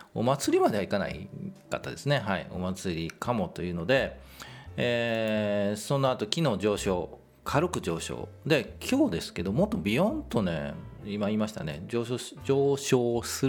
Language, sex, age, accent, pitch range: Japanese, male, 40-59, native, 95-125 Hz